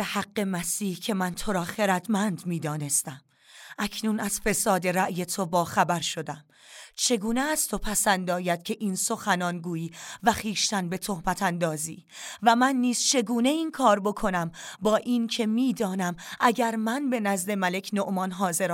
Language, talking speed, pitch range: Persian, 145 wpm, 185-225 Hz